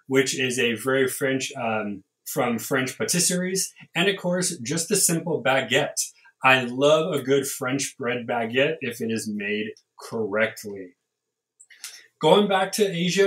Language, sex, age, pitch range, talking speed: English, male, 30-49, 135-190 Hz, 145 wpm